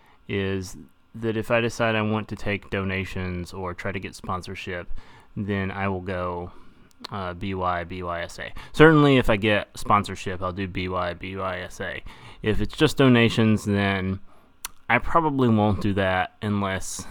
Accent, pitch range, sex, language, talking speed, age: American, 95-115 Hz, male, English, 145 wpm, 20-39